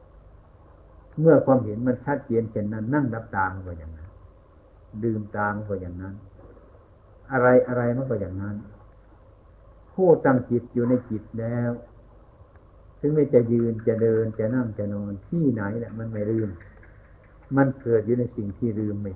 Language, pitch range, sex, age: Thai, 85-115 Hz, male, 60-79